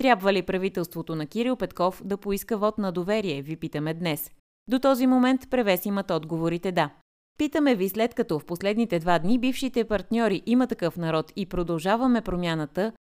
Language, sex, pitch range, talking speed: Bulgarian, female, 175-240 Hz, 170 wpm